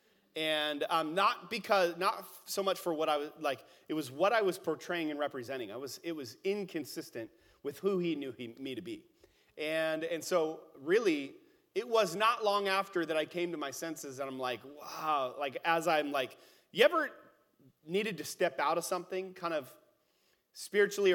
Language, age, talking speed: English, 30-49, 195 wpm